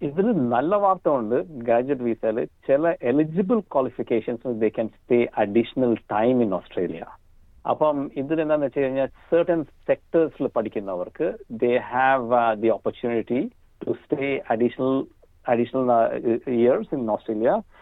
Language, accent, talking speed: Malayalam, native, 140 wpm